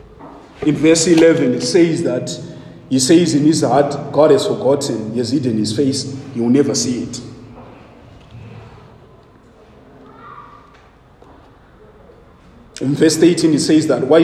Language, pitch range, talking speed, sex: English, 125-165 Hz, 130 wpm, male